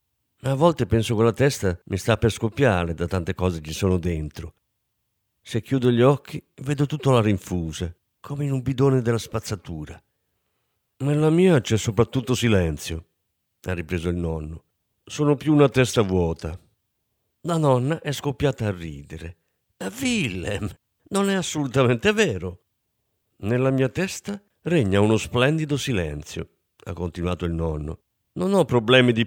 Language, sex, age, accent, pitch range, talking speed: Italian, male, 50-69, native, 90-140 Hz, 145 wpm